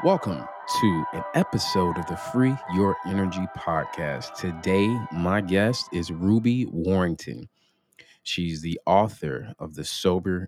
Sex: male